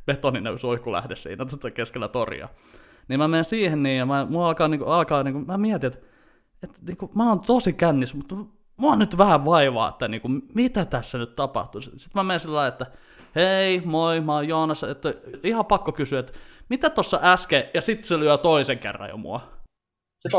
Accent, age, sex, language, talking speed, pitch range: native, 20-39, male, Finnish, 190 wpm, 125-180 Hz